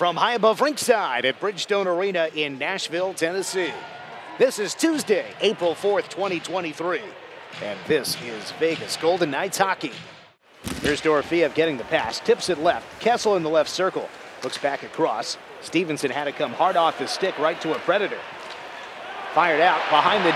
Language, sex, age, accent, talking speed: English, male, 40-59, American, 160 wpm